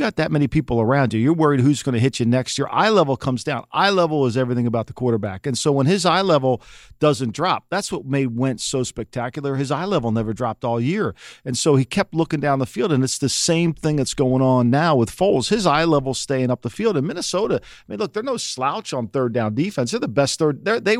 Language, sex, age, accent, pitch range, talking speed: English, male, 40-59, American, 125-160 Hz, 255 wpm